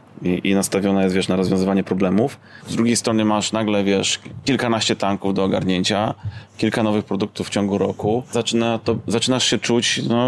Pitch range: 100-115 Hz